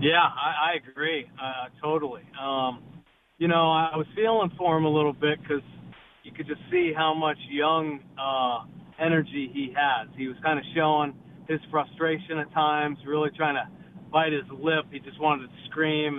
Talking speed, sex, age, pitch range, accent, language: 180 wpm, male, 40-59, 140-165 Hz, American, English